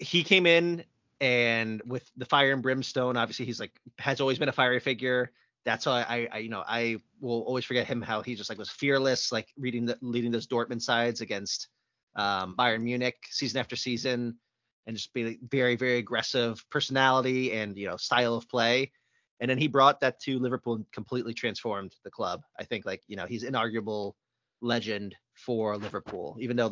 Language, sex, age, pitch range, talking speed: English, male, 30-49, 110-130 Hz, 195 wpm